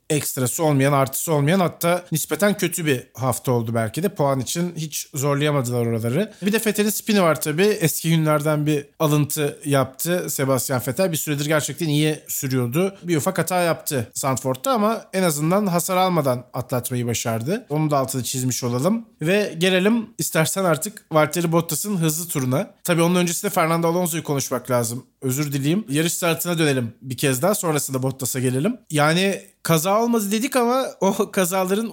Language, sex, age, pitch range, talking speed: Turkish, male, 40-59, 140-190 Hz, 160 wpm